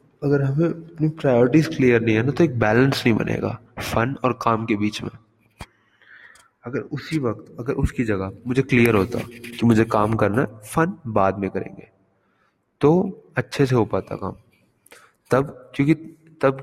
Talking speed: 165 wpm